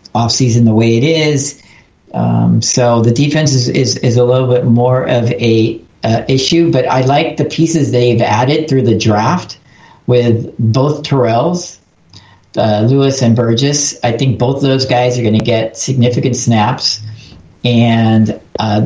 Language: English